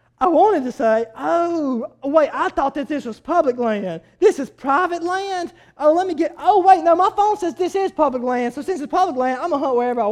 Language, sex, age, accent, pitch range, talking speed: English, male, 20-39, American, 245-320 Hz, 250 wpm